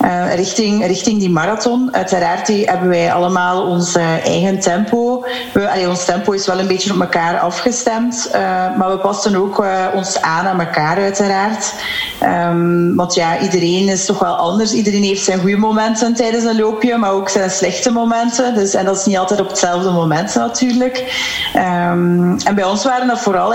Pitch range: 180-220 Hz